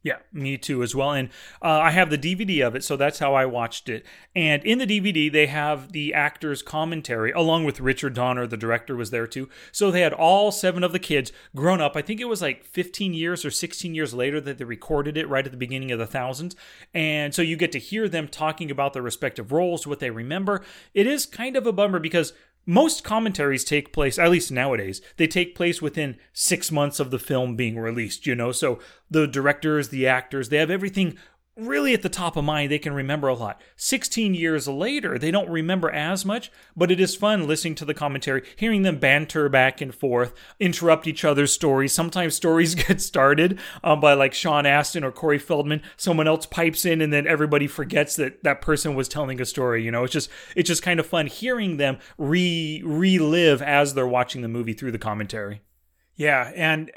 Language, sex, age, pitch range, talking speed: English, male, 30-49, 135-175 Hz, 215 wpm